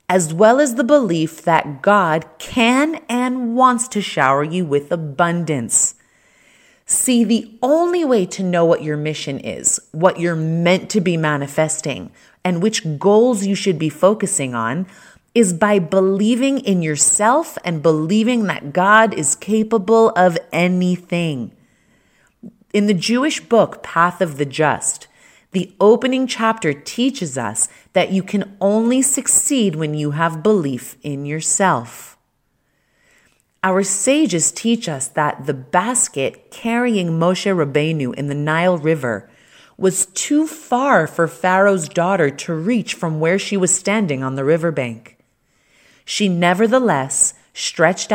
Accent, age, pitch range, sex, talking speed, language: American, 30-49, 155-215 Hz, female, 135 wpm, English